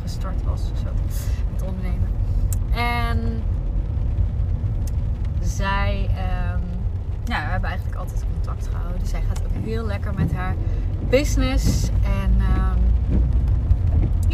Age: 20-39